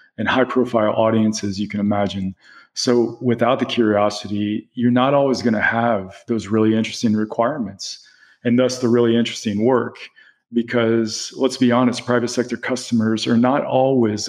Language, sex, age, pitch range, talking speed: English, male, 40-59, 100-120 Hz, 150 wpm